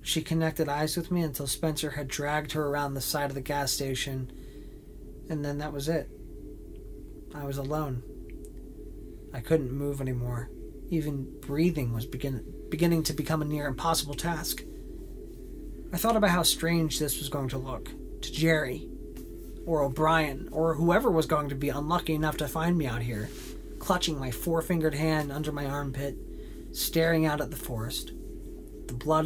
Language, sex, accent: English, male, American